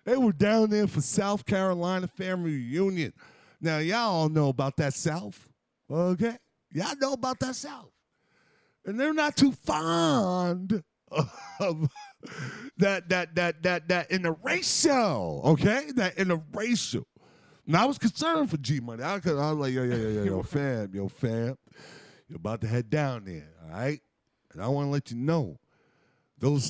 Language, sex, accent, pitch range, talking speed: English, male, American, 145-200 Hz, 160 wpm